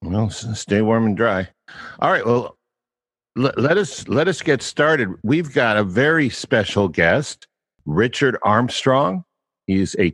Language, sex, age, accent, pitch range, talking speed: English, male, 60-79, American, 95-120 Hz, 150 wpm